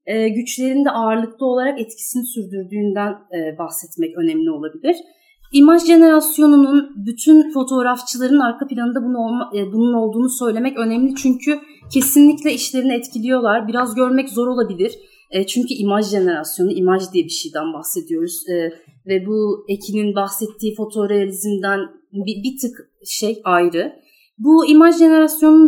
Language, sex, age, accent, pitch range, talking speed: Turkish, female, 30-49, native, 210-295 Hz, 115 wpm